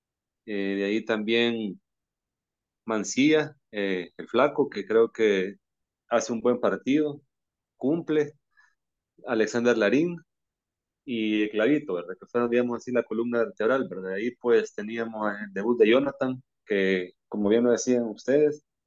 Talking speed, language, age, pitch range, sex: 135 wpm, Spanish, 30-49, 110-140 Hz, male